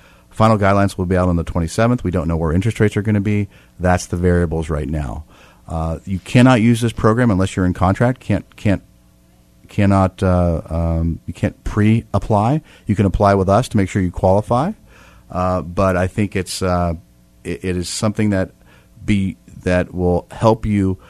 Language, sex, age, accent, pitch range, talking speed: English, male, 40-59, American, 85-100 Hz, 195 wpm